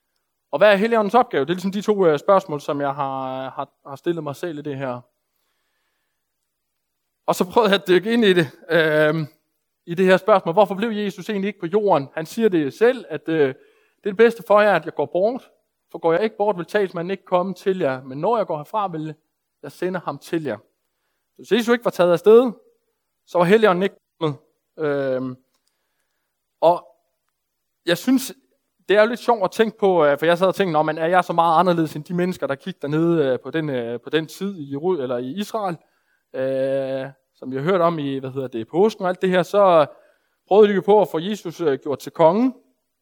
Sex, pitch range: male, 150-205 Hz